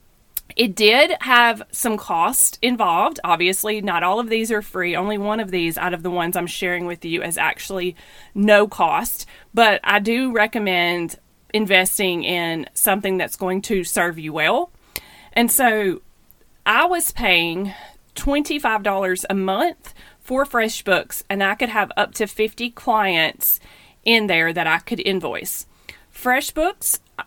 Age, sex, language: 30-49, female, English